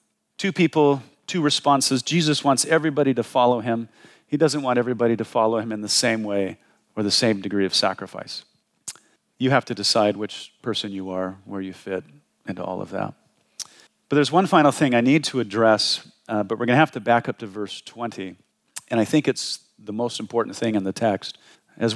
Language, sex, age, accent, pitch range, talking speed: English, male, 40-59, American, 105-130 Hz, 205 wpm